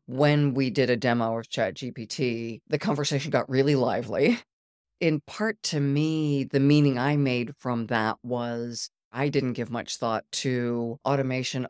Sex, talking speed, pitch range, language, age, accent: female, 155 wpm, 115-135 Hz, English, 40-59, American